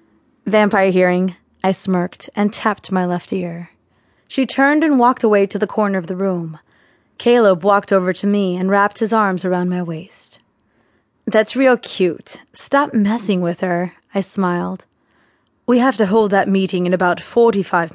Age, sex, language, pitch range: 20-39, female, English, 185-240 Hz